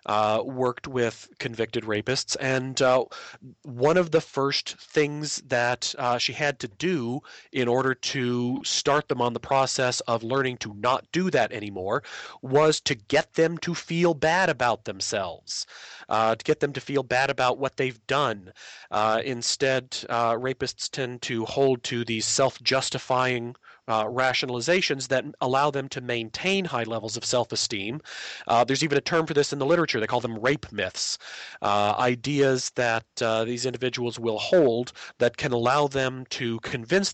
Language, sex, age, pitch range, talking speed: English, male, 30-49, 120-145 Hz, 170 wpm